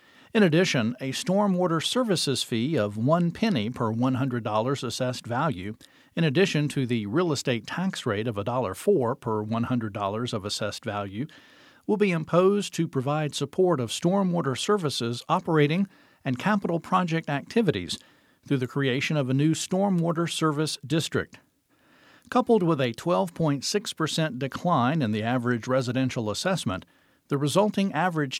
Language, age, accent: English, 50-69, American